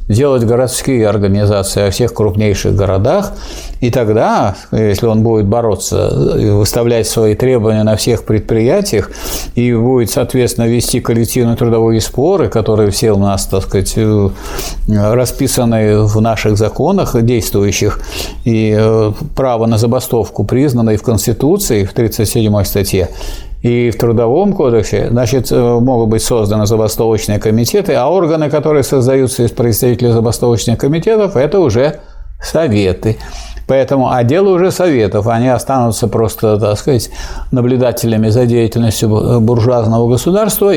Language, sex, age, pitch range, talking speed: Russian, male, 50-69, 105-125 Hz, 120 wpm